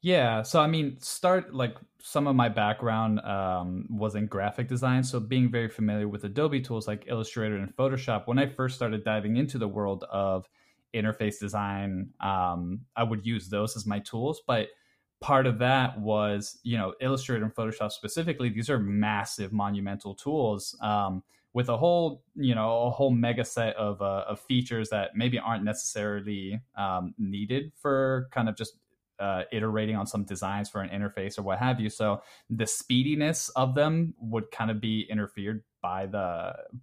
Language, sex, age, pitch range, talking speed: English, male, 20-39, 100-125 Hz, 180 wpm